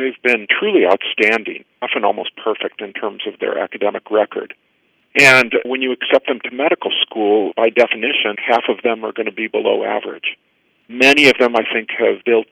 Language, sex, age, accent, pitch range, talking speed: English, male, 50-69, American, 110-125 Hz, 185 wpm